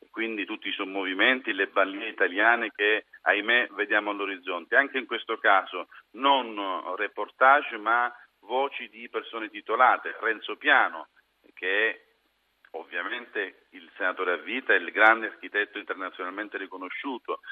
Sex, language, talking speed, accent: male, Italian, 125 wpm, native